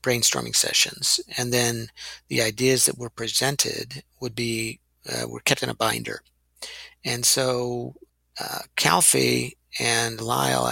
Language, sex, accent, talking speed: English, male, American, 130 wpm